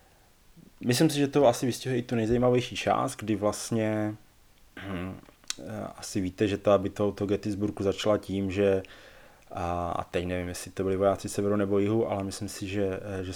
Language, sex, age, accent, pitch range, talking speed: Czech, male, 20-39, native, 95-105 Hz, 170 wpm